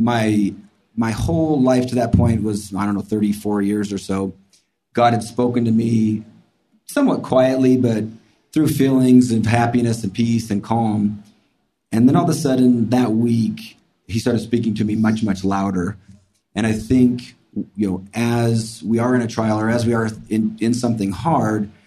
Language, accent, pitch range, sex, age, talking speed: English, American, 105-120 Hz, male, 30-49, 180 wpm